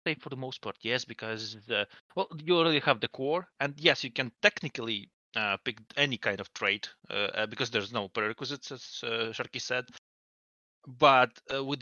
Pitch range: 105-135 Hz